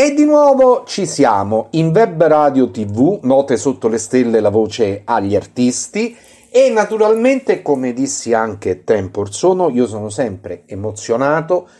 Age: 40-59